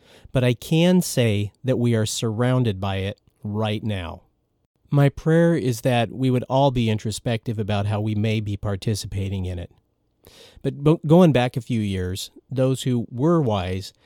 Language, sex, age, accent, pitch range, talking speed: English, male, 40-59, American, 105-135 Hz, 165 wpm